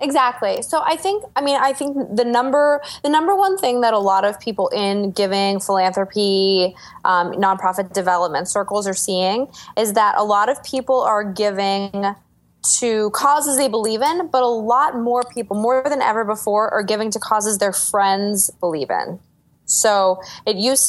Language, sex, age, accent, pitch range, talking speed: English, female, 20-39, American, 195-240 Hz, 175 wpm